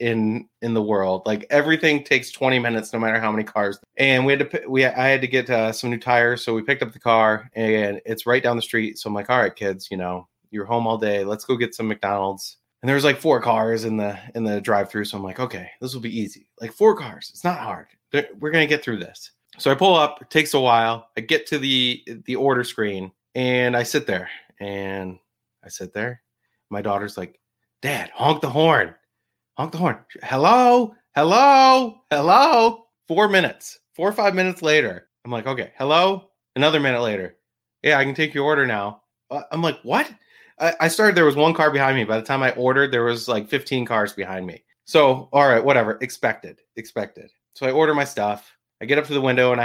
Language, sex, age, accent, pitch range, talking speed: English, male, 30-49, American, 110-145 Hz, 220 wpm